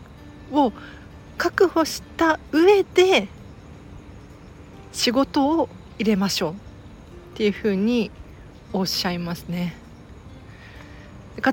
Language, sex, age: Japanese, female, 40-59